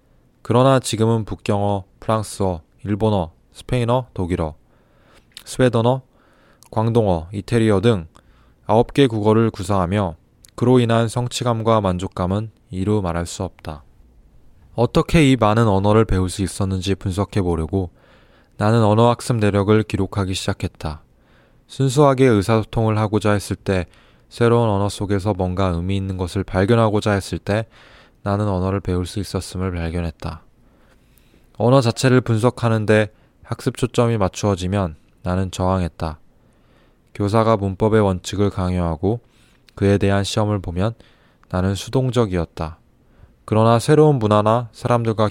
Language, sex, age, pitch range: Korean, male, 20-39, 95-115 Hz